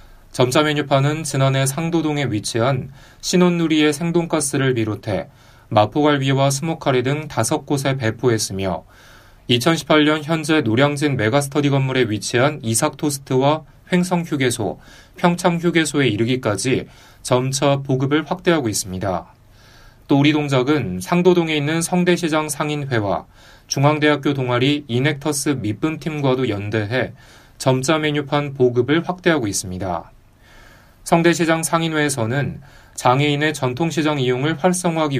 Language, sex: Korean, male